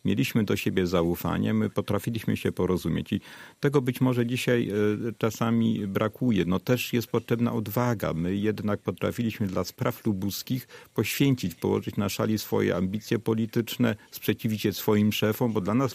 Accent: native